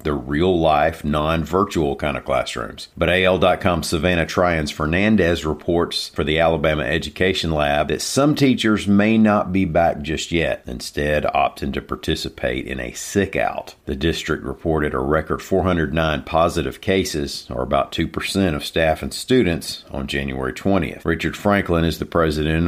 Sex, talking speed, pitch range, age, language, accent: male, 145 wpm, 70-85 Hz, 50-69, English, American